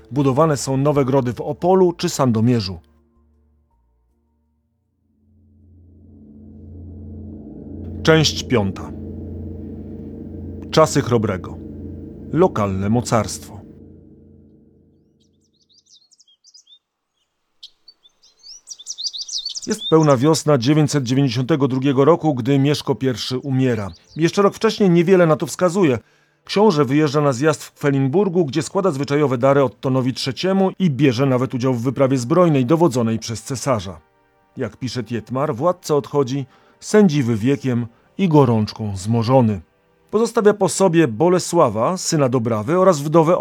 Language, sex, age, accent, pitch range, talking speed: Polish, male, 40-59, native, 105-155 Hz, 100 wpm